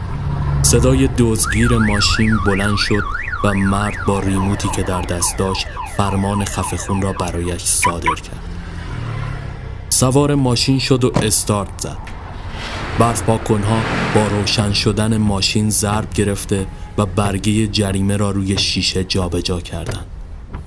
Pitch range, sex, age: 95-115 Hz, male, 30-49